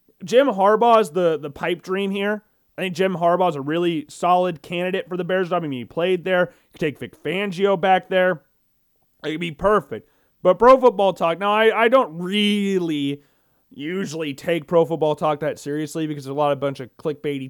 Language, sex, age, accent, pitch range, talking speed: English, male, 30-49, American, 150-210 Hz, 200 wpm